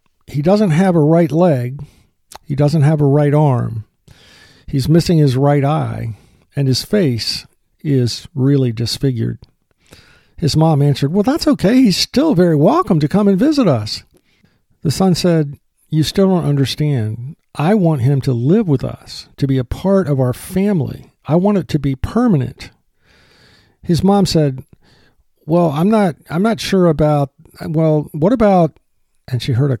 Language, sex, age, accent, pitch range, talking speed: English, male, 50-69, American, 130-160 Hz, 165 wpm